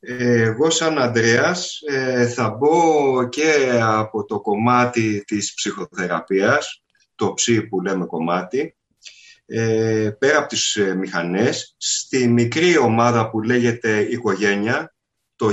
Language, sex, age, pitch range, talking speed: Greek, male, 30-49, 115-145 Hz, 105 wpm